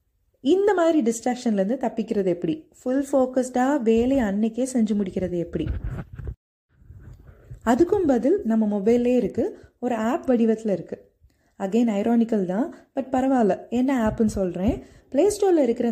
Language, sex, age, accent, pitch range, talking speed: Tamil, female, 20-39, native, 195-260 Hz, 115 wpm